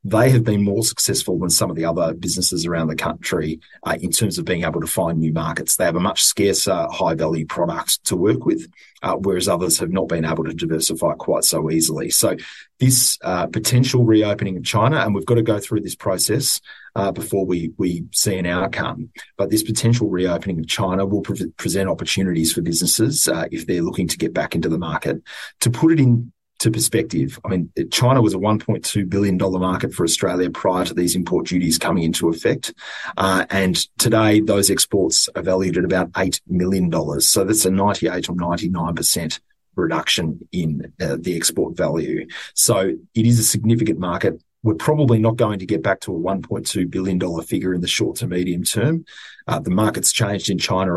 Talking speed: 195 wpm